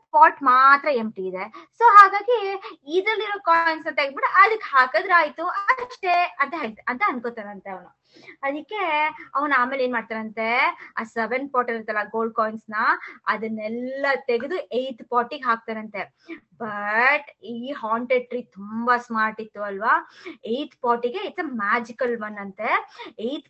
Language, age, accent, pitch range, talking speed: Kannada, 20-39, native, 230-345 Hz, 130 wpm